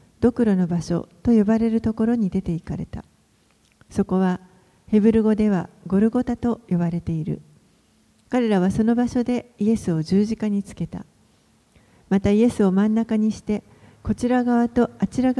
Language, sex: Japanese, female